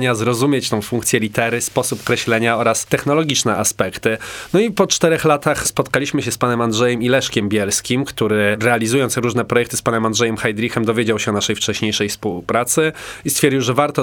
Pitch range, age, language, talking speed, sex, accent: 110-125 Hz, 20-39, Polish, 170 wpm, male, native